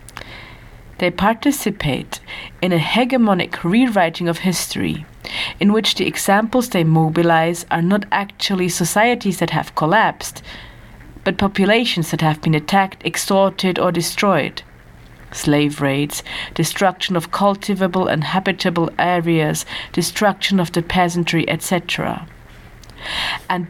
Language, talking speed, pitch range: German, 110 wpm, 155-195 Hz